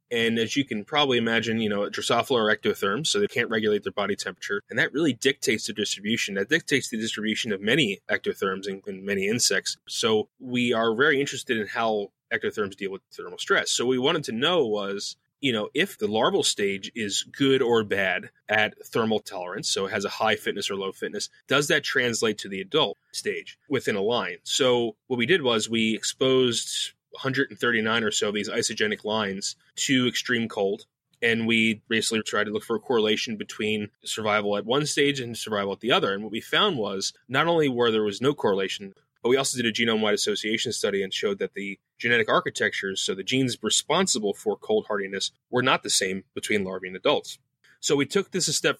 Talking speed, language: 210 wpm, English